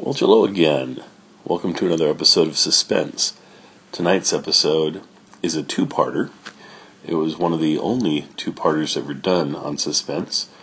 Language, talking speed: English, 140 wpm